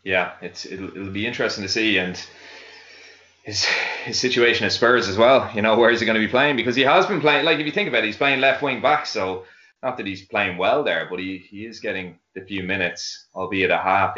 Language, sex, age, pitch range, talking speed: English, male, 20-39, 95-120 Hz, 250 wpm